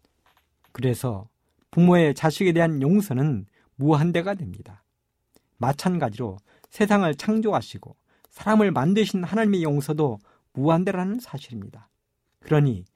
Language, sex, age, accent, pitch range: Korean, male, 50-69, native, 120-175 Hz